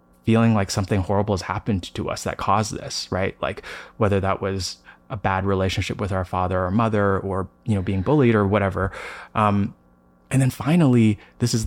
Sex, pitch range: male, 95-110 Hz